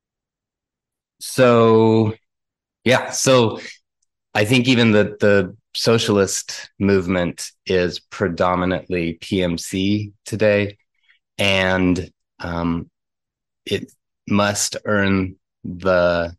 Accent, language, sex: American, English, male